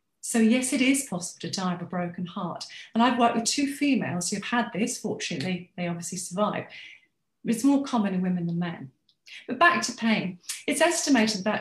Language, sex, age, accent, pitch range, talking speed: English, female, 40-59, British, 185-255 Hz, 200 wpm